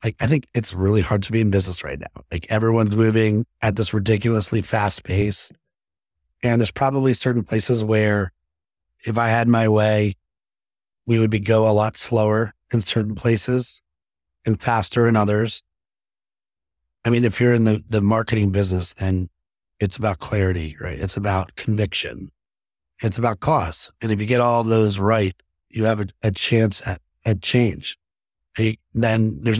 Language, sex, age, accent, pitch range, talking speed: English, male, 30-49, American, 95-120 Hz, 165 wpm